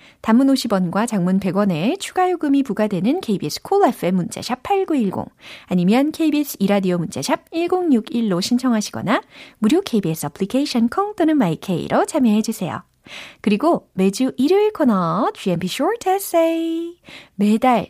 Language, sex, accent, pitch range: Korean, female, native, 185-285 Hz